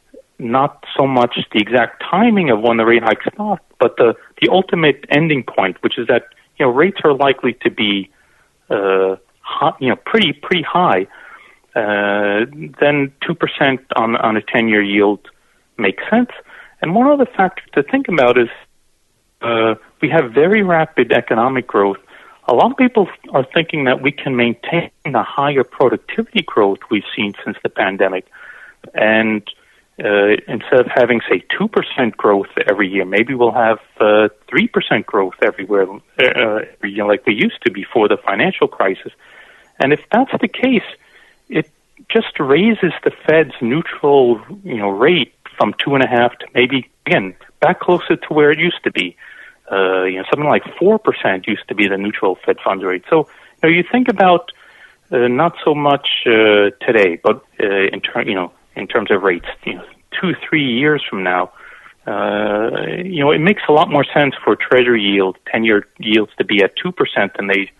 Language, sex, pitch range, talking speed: English, male, 105-170 Hz, 180 wpm